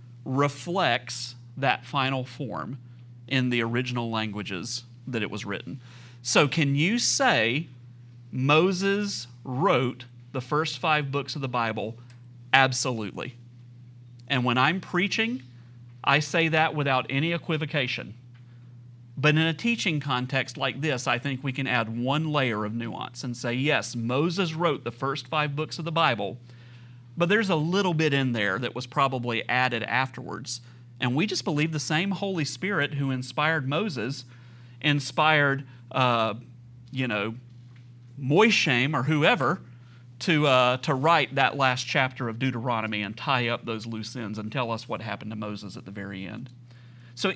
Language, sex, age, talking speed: English, male, 40-59, 155 wpm